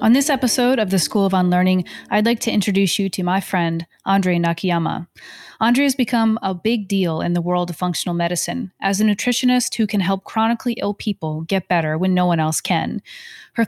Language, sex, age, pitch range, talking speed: English, female, 30-49, 180-215 Hz, 205 wpm